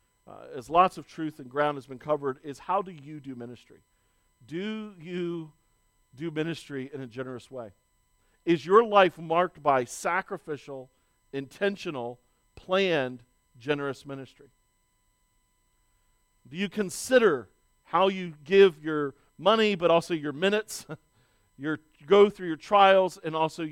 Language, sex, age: English, male, 40-59